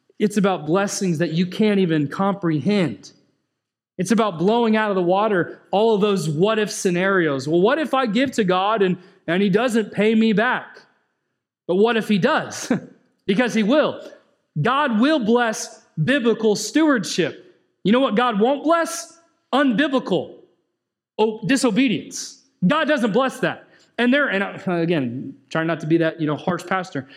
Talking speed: 165 wpm